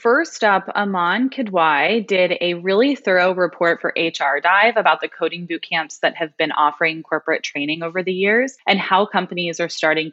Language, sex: English, female